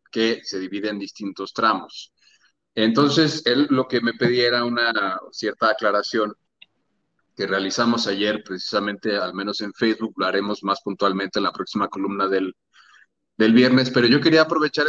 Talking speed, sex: 155 wpm, male